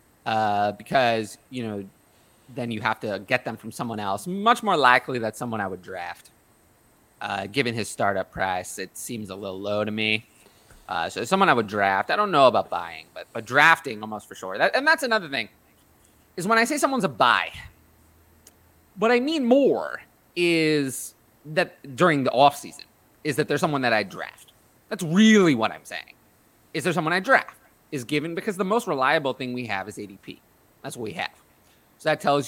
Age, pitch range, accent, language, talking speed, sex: 30-49, 105-145 Hz, American, English, 200 wpm, male